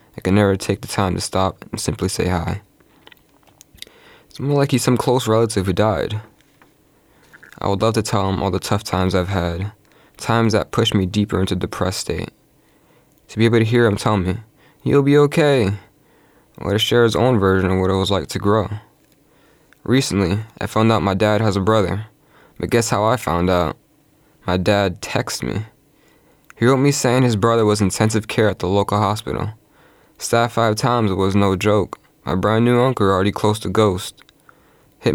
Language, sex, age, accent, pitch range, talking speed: English, male, 20-39, American, 95-120 Hz, 200 wpm